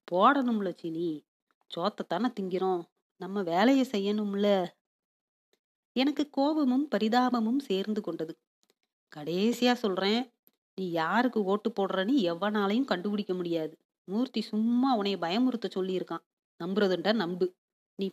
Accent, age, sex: native, 30-49, female